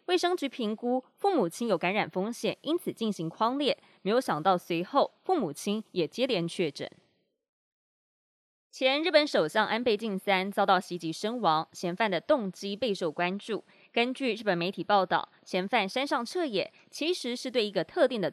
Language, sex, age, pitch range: Chinese, female, 20-39, 180-260 Hz